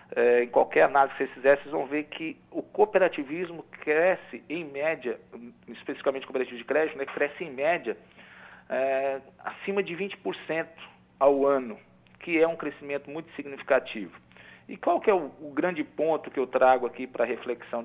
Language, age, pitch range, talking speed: Portuguese, 40-59, 130-170 Hz, 170 wpm